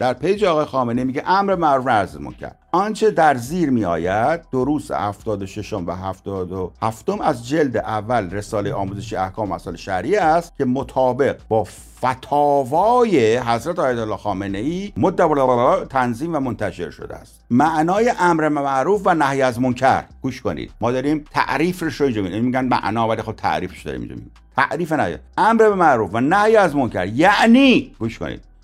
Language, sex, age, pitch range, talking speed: Persian, male, 50-69, 110-180 Hz, 155 wpm